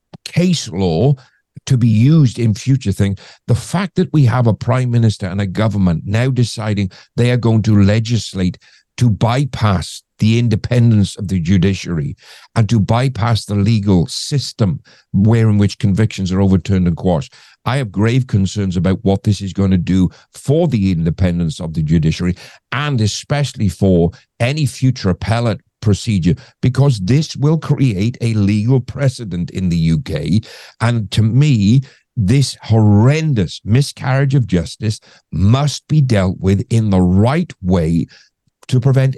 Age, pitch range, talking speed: 50-69, 95-130 Hz, 150 wpm